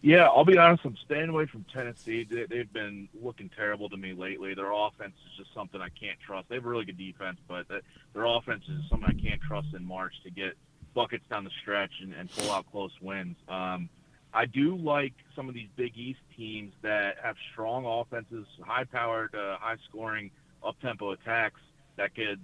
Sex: male